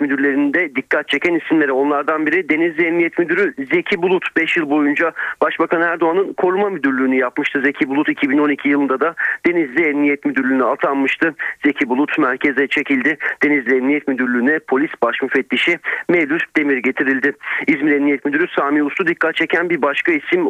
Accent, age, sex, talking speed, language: native, 40-59, male, 145 wpm, Turkish